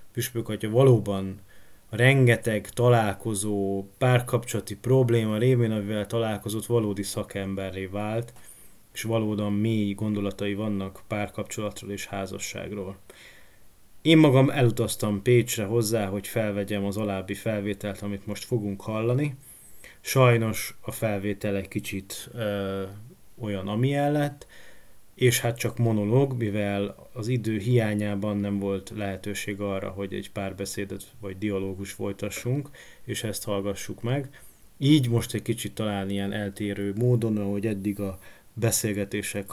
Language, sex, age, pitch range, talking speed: Hungarian, male, 30-49, 100-115 Hz, 120 wpm